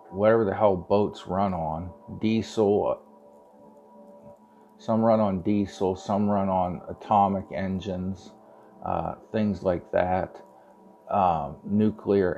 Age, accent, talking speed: 50-69, American, 105 wpm